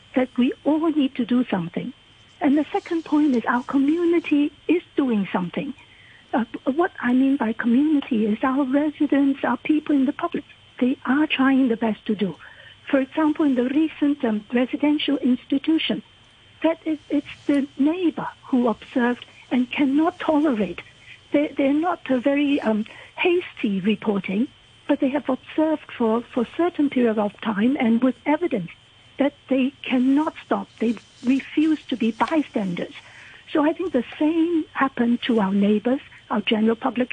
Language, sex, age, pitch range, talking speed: English, female, 60-79, 240-305 Hz, 160 wpm